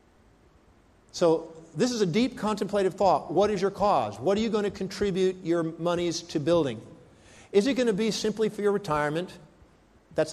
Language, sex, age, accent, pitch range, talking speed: English, male, 50-69, American, 160-200 Hz, 180 wpm